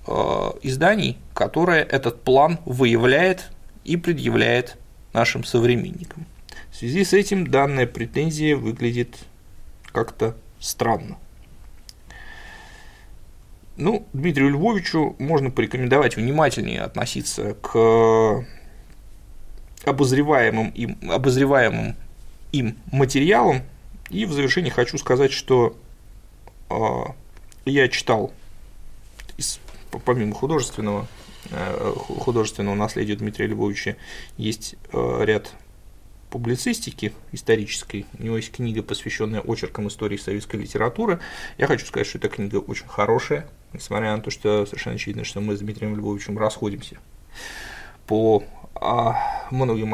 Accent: native